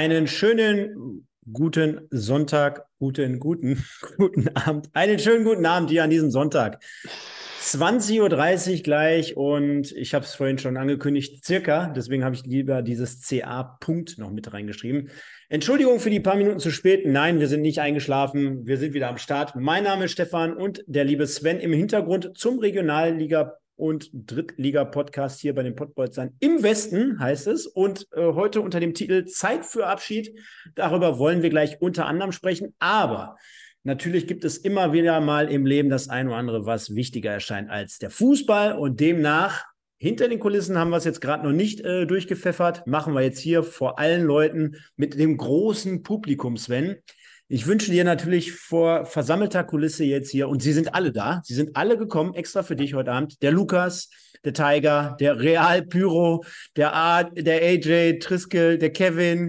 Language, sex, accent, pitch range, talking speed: German, male, German, 140-180 Hz, 175 wpm